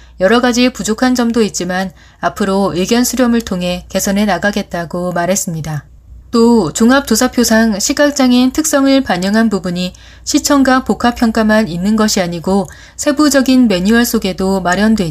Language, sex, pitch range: Korean, female, 185-235 Hz